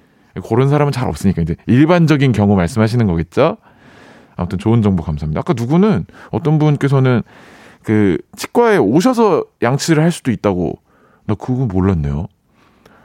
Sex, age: male, 40-59